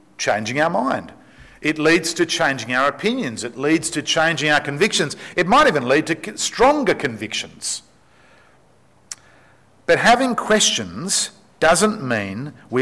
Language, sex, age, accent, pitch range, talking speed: English, male, 50-69, Australian, 125-180 Hz, 130 wpm